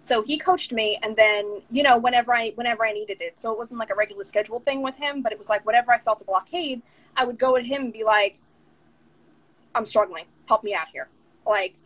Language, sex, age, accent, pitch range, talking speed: English, female, 20-39, American, 210-265 Hz, 245 wpm